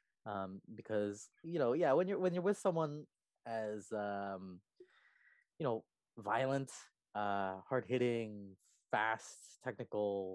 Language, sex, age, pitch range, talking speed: English, male, 20-39, 100-130 Hz, 120 wpm